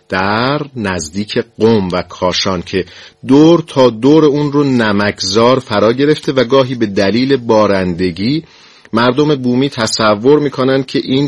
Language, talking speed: Persian, 135 wpm